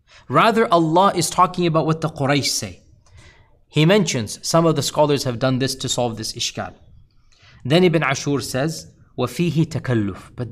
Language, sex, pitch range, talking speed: English, male, 125-165 Hz, 165 wpm